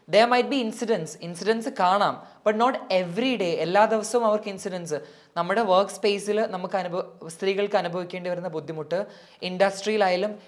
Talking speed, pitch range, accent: 180 wpm, 175-220 Hz, native